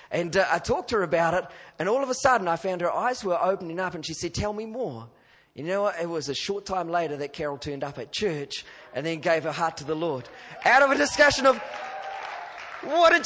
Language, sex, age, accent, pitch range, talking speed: English, male, 30-49, Australian, 165-255 Hz, 255 wpm